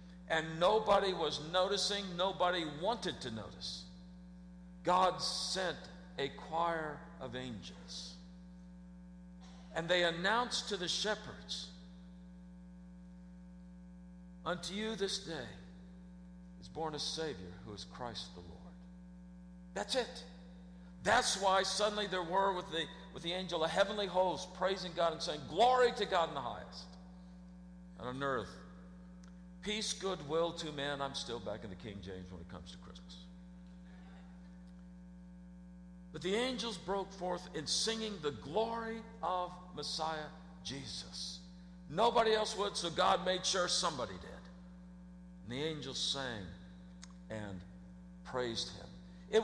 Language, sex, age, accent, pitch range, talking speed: English, male, 50-69, American, 140-185 Hz, 125 wpm